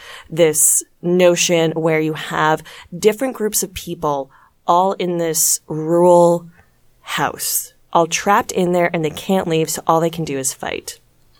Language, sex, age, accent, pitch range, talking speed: English, female, 20-39, American, 155-180 Hz, 155 wpm